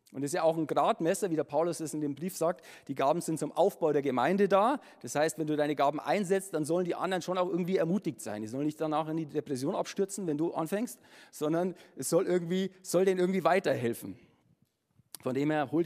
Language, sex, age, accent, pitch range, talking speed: German, male, 50-69, German, 145-180 Hz, 235 wpm